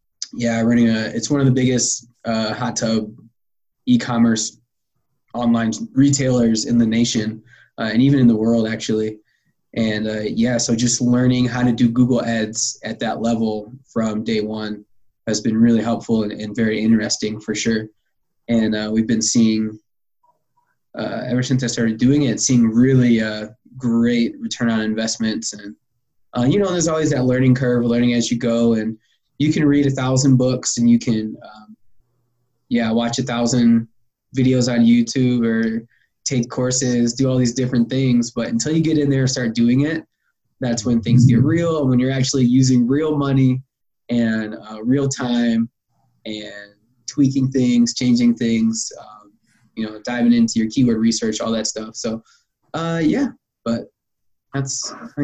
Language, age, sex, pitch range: English, 20-39, male, 110-130 Hz